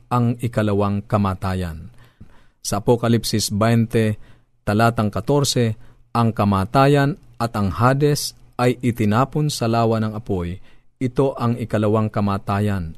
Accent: native